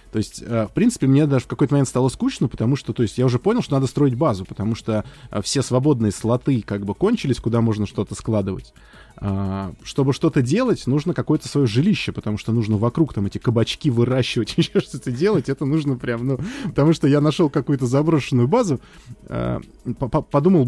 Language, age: Russian, 20-39